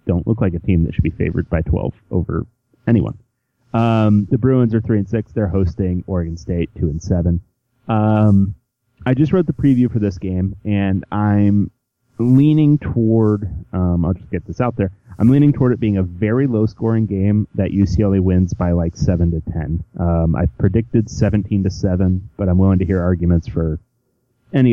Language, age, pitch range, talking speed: English, 30-49, 90-115 Hz, 190 wpm